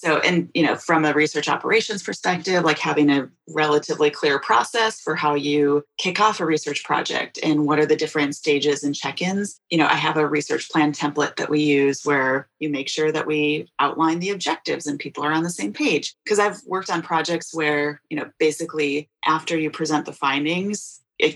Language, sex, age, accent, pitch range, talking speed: English, female, 30-49, American, 145-165 Hz, 205 wpm